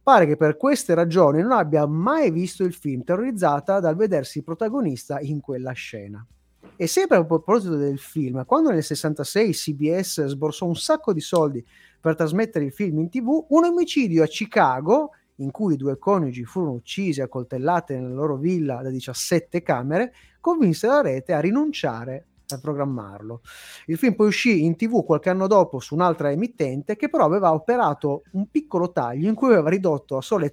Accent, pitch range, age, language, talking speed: native, 130-180 Hz, 30-49, Italian, 175 wpm